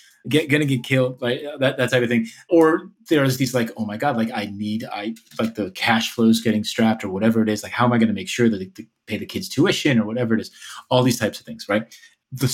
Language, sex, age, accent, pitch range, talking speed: English, male, 30-49, American, 110-130 Hz, 280 wpm